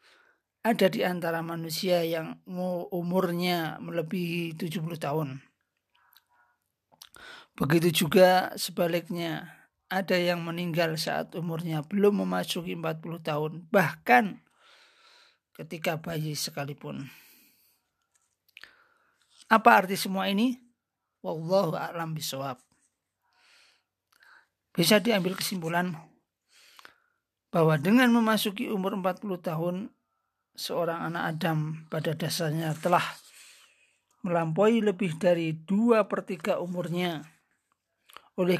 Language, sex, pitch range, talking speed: Indonesian, male, 165-195 Hz, 85 wpm